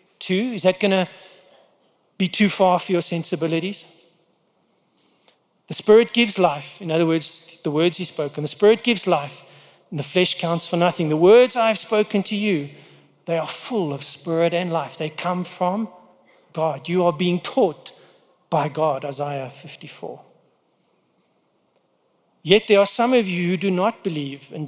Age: 40-59